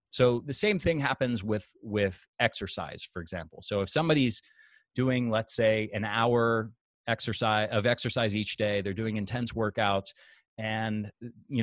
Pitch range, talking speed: 100-120 Hz, 150 wpm